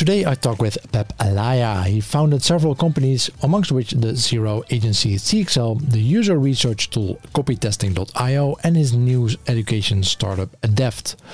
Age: 50-69